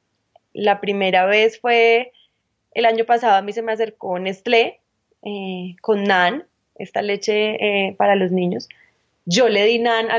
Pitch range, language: 195-235 Hz, Spanish